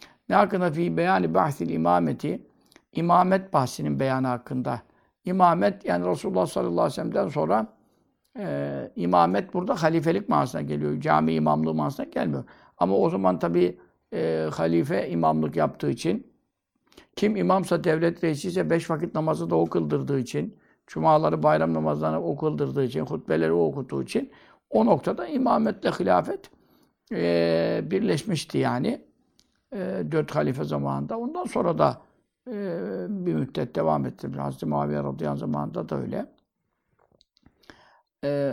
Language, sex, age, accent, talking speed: Turkish, male, 60-79, native, 125 wpm